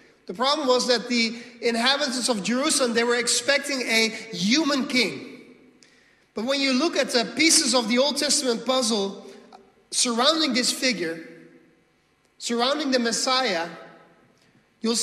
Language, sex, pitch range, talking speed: English, male, 180-250 Hz, 130 wpm